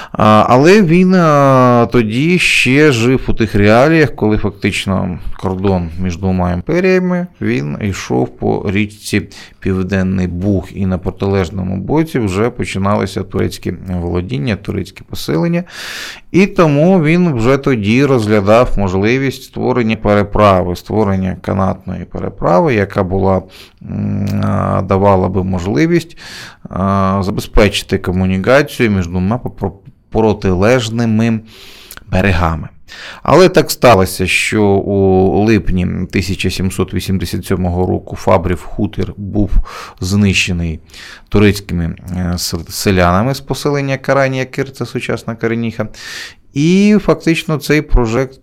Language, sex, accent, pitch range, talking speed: Ukrainian, male, native, 95-120 Hz, 95 wpm